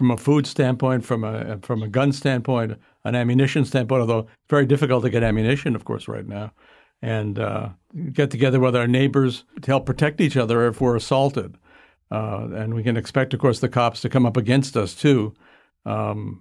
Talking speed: 200 wpm